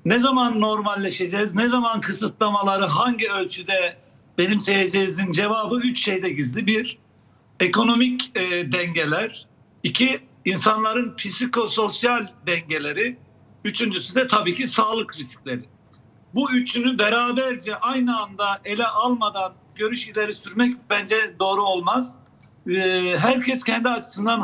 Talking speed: 105 wpm